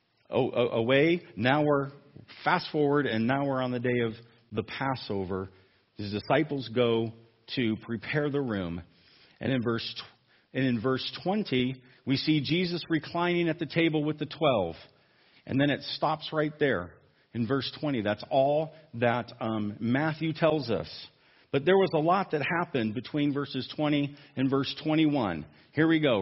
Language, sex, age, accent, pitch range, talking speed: English, male, 40-59, American, 120-160 Hz, 160 wpm